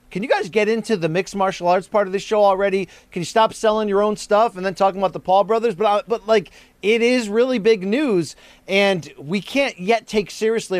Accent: American